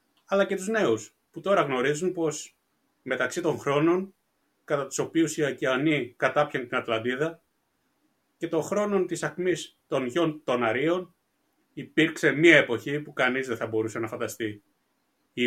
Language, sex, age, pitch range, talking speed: Greek, male, 30-49, 125-175 Hz, 150 wpm